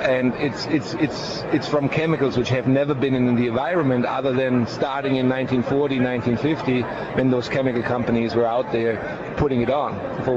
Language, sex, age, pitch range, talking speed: English, male, 40-59, 125-150 Hz, 180 wpm